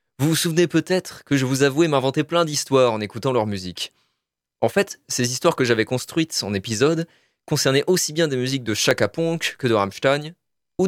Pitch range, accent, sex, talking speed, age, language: 105-135 Hz, French, male, 195 wpm, 20-39, French